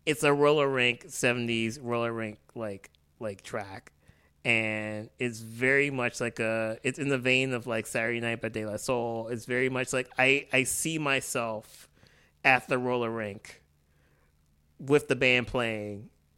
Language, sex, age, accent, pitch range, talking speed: English, male, 30-49, American, 110-130 Hz, 160 wpm